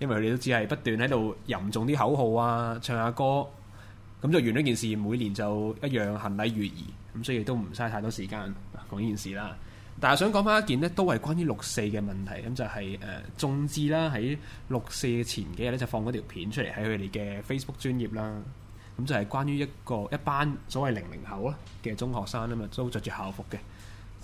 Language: Chinese